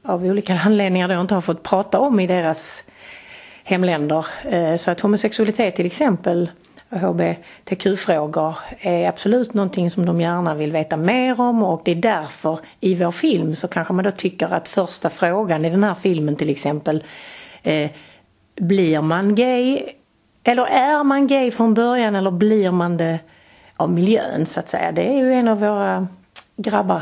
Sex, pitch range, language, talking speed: female, 160-210 Hz, Swedish, 175 wpm